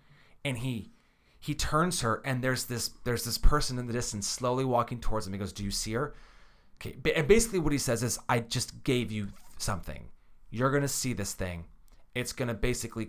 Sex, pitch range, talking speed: male, 100-135 Hz, 200 wpm